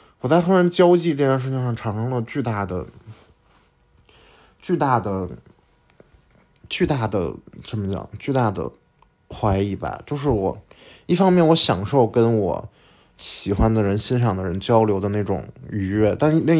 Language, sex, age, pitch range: Chinese, male, 20-39, 105-155 Hz